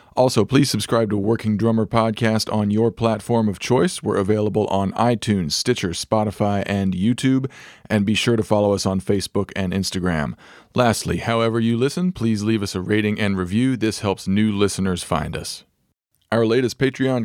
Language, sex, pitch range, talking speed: English, male, 95-110 Hz, 175 wpm